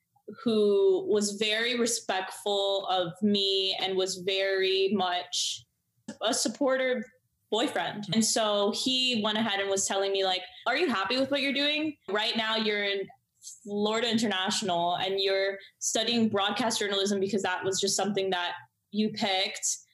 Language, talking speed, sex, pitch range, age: English, 145 wpm, female, 195-230 Hz, 20-39